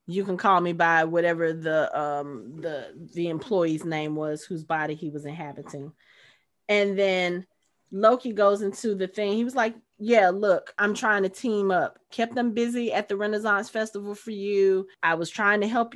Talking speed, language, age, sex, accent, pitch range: 185 wpm, English, 30-49, female, American, 180-245 Hz